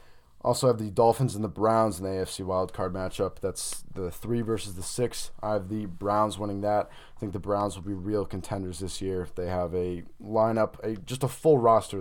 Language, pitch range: English, 95-115 Hz